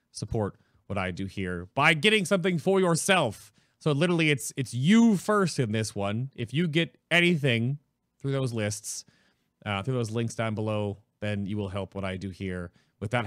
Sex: male